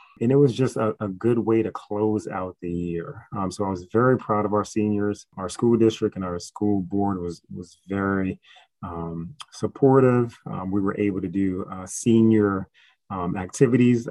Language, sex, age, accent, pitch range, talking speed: English, male, 30-49, American, 95-110 Hz, 185 wpm